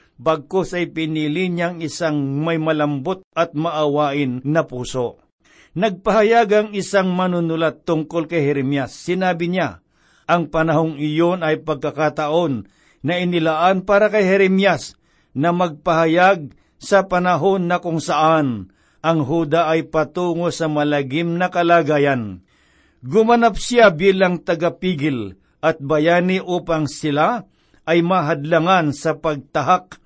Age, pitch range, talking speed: 50-69, 150-180 Hz, 115 wpm